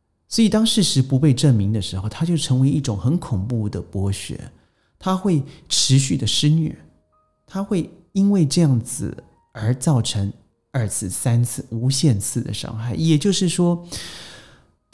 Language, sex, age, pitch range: Chinese, male, 30-49, 110-155 Hz